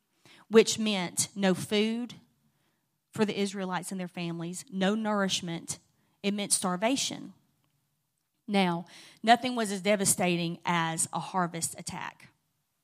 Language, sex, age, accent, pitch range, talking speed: English, female, 30-49, American, 175-210 Hz, 110 wpm